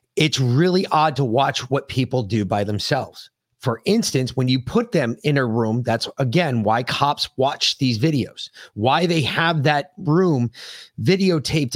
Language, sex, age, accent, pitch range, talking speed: English, male, 30-49, American, 125-175 Hz, 165 wpm